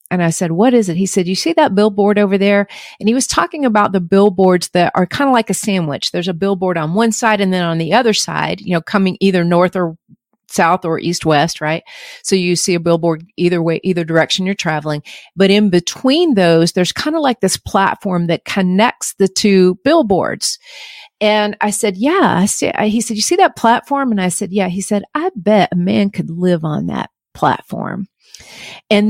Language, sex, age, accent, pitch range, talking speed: English, female, 40-59, American, 180-225 Hz, 210 wpm